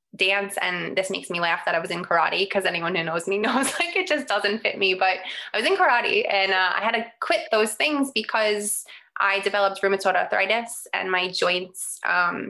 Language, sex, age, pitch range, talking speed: English, female, 20-39, 175-200 Hz, 215 wpm